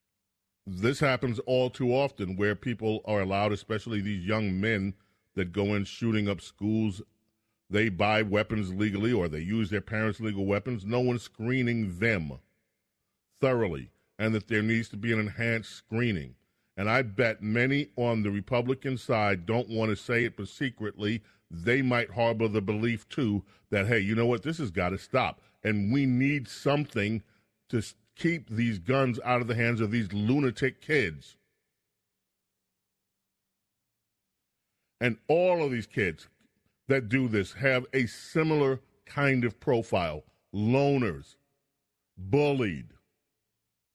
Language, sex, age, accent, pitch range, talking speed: English, male, 40-59, American, 100-125 Hz, 145 wpm